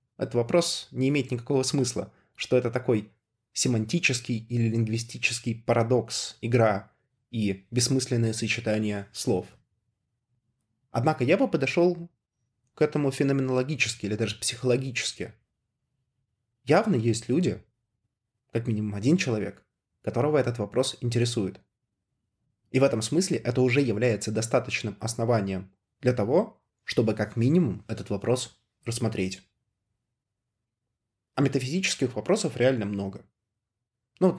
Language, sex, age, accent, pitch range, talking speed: Russian, male, 20-39, native, 105-125 Hz, 110 wpm